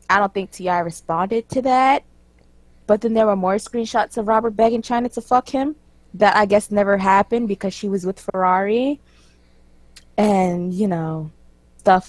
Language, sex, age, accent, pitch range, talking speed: English, female, 20-39, American, 160-210 Hz, 170 wpm